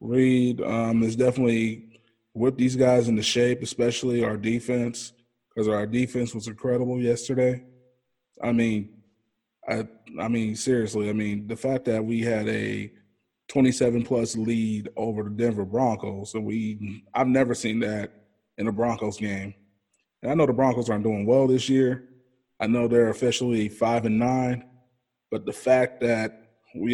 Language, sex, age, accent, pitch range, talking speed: English, male, 20-39, American, 110-125 Hz, 160 wpm